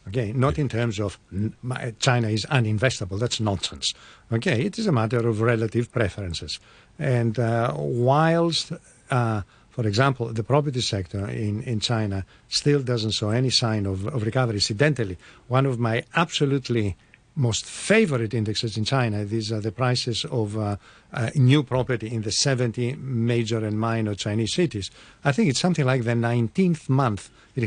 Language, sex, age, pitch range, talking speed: English, male, 50-69, 110-135 Hz, 160 wpm